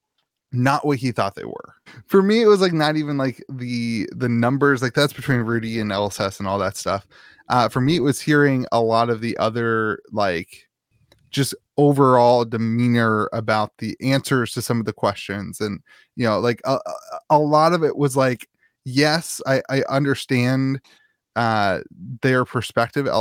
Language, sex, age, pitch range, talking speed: English, male, 20-39, 115-135 Hz, 175 wpm